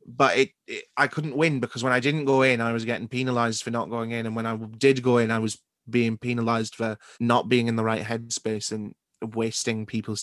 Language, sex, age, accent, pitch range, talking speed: English, male, 20-39, British, 110-125 Hz, 235 wpm